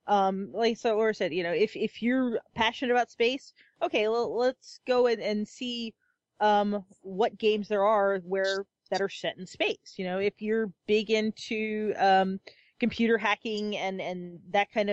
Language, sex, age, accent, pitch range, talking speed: English, female, 30-49, American, 195-230 Hz, 175 wpm